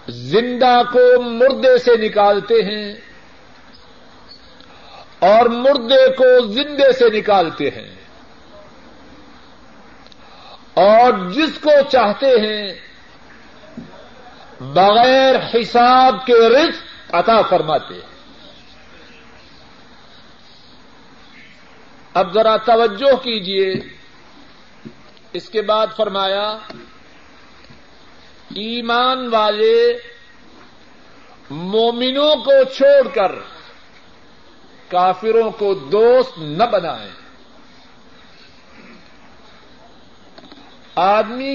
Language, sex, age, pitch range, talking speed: Urdu, male, 50-69, 215-270 Hz, 65 wpm